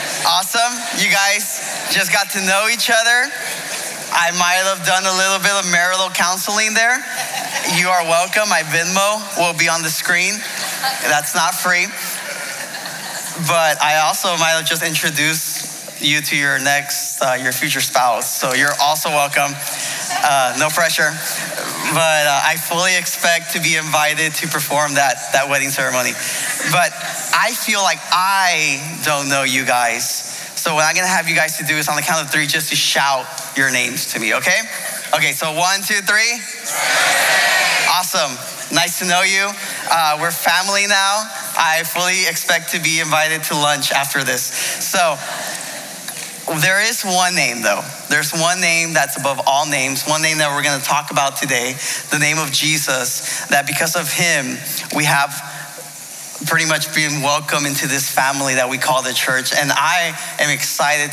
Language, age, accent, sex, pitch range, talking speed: English, 20-39, American, male, 140-180 Hz, 170 wpm